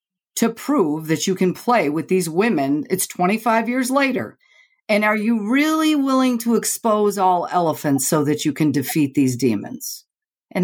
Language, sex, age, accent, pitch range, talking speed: English, female, 50-69, American, 175-240 Hz, 170 wpm